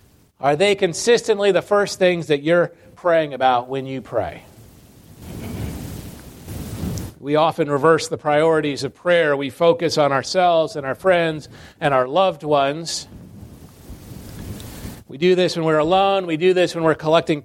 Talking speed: 150 wpm